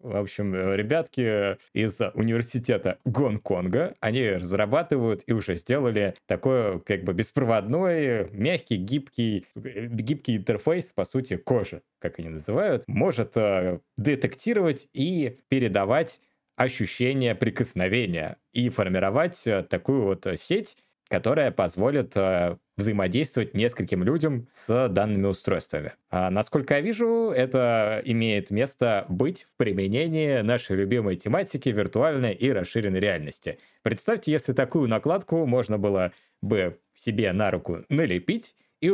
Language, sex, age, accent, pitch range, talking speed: Russian, male, 20-39, native, 100-135 Hz, 110 wpm